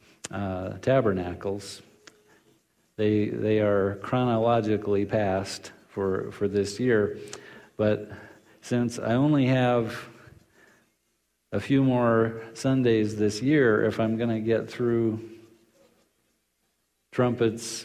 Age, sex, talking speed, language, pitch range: 50-69, male, 100 wpm, English, 105-120 Hz